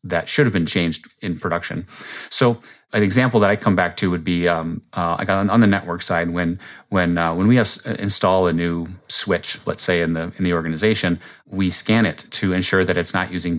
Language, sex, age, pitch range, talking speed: English, male, 30-49, 85-100 Hz, 230 wpm